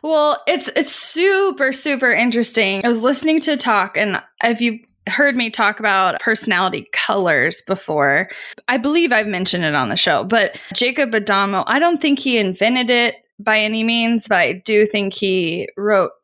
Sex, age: female, 10-29